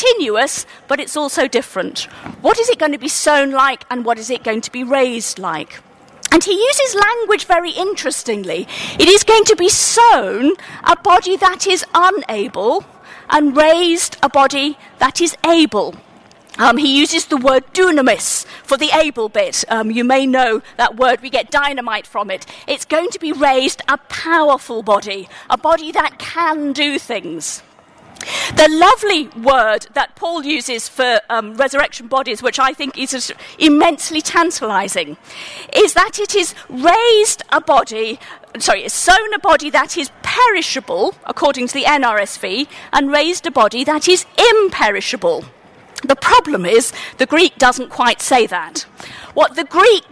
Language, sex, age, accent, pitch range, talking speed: English, female, 40-59, British, 265-355 Hz, 160 wpm